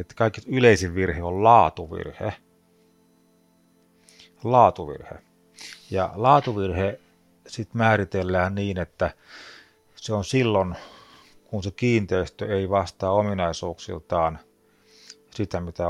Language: Finnish